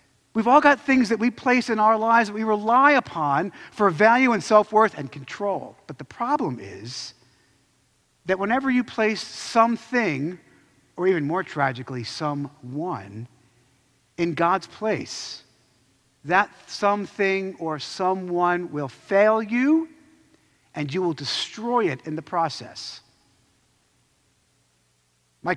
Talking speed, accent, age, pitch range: 125 wpm, American, 50-69, 145-240 Hz